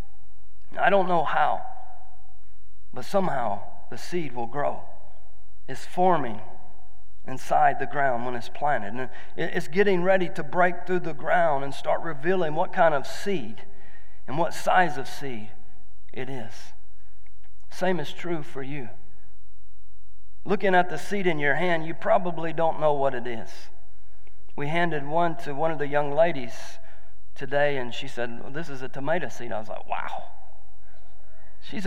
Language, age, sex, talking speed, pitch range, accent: English, 40-59, male, 160 wpm, 95-155 Hz, American